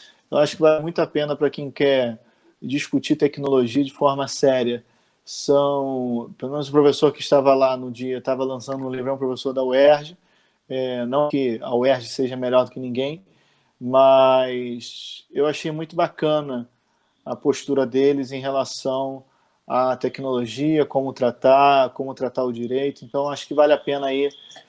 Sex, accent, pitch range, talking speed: male, Brazilian, 130-175 Hz, 165 wpm